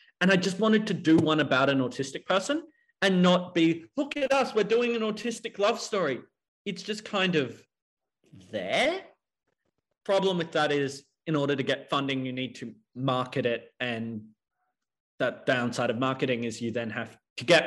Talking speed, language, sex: 180 wpm, English, male